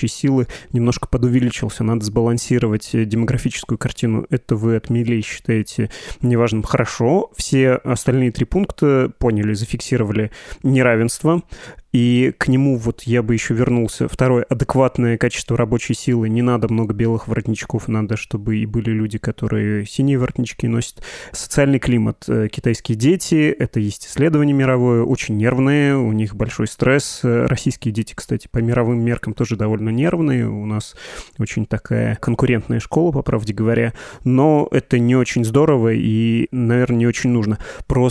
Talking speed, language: 145 wpm, Russian